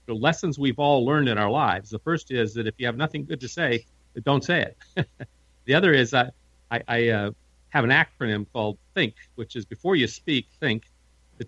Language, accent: English, American